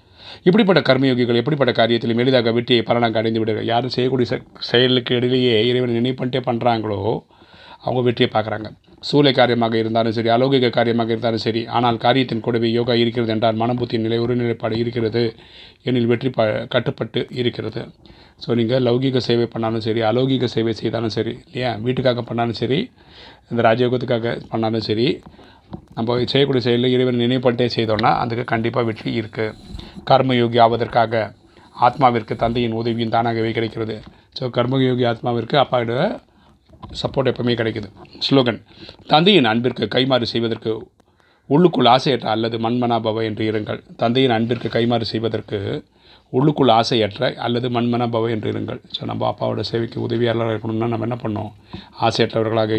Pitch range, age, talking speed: 110-125 Hz, 30-49, 130 wpm